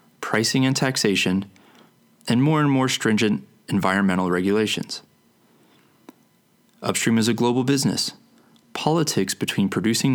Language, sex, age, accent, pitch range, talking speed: English, male, 20-39, American, 95-135 Hz, 105 wpm